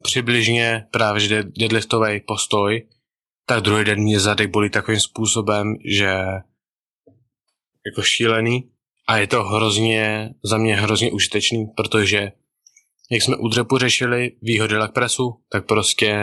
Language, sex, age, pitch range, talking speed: Czech, male, 20-39, 105-115 Hz, 120 wpm